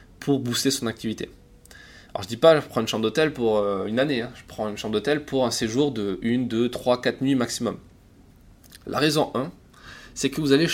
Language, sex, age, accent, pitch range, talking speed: French, male, 20-39, French, 110-130 Hz, 225 wpm